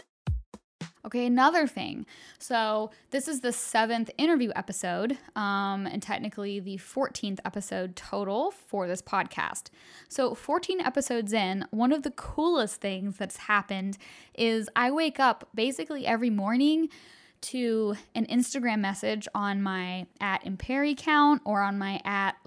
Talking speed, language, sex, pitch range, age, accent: 135 wpm, English, female, 205-255 Hz, 10-29, American